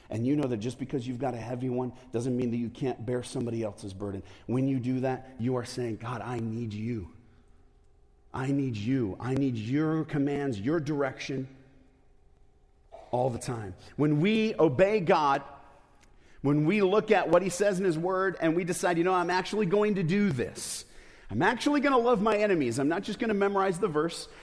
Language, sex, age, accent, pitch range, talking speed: English, male, 40-59, American, 120-175 Hz, 205 wpm